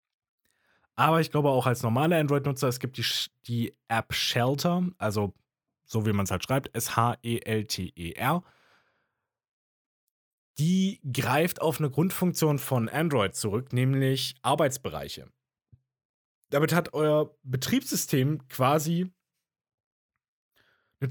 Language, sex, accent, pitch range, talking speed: German, male, German, 115-155 Hz, 105 wpm